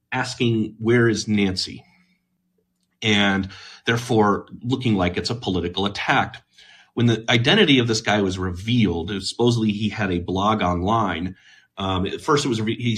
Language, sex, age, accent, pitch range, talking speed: English, male, 30-49, American, 95-120 Hz, 155 wpm